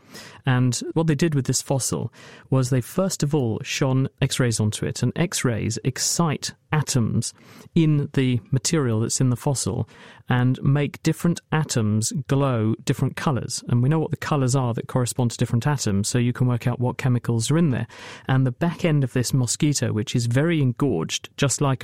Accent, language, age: British, English, 40-59